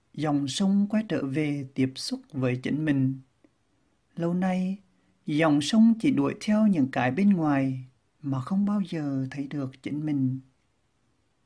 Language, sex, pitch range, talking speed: Vietnamese, male, 130-195 Hz, 150 wpm